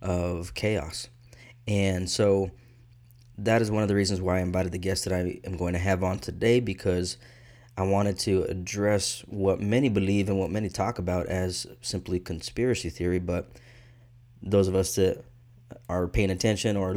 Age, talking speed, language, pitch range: 20-39, 175 wpm, English, 95-115 Hz